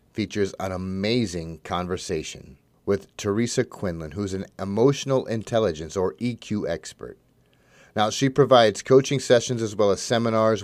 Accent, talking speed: American, 130 wpm